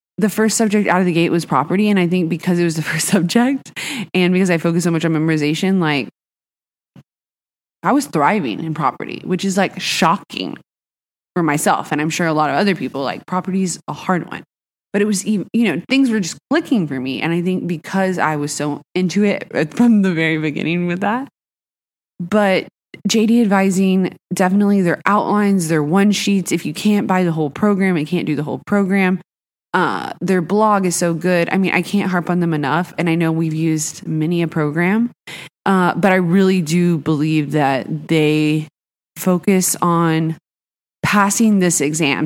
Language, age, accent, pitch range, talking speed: English, 20-39, American, 160-195 Hz, 190 wpm